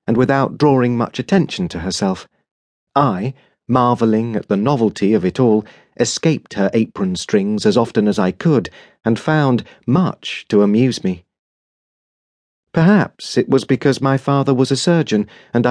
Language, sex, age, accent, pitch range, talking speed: English, male, 40-59, British, 110-150 Hz, 150 wpm